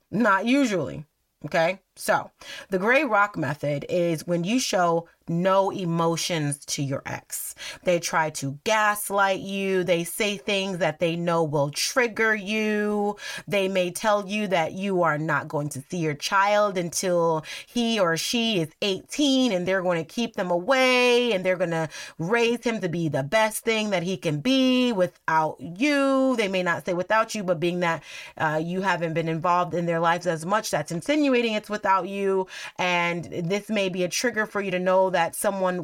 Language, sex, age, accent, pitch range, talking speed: English, female, 30-49, American, 170-230 Hz, 185 wpm